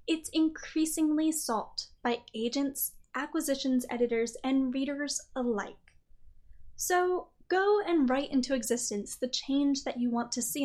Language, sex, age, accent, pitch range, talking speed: English, female, 10-29, American, 230-310 Hz, 130 wpm